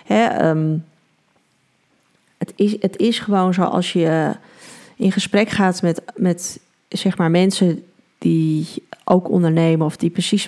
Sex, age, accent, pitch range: female, 30-49, Dutch, 165-190 Hz